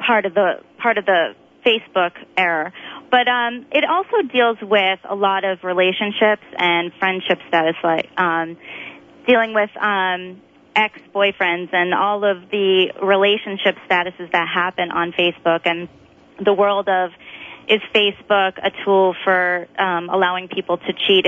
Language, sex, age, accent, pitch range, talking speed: English, female, 30-49, American, 180-205 Hz, 145 wpm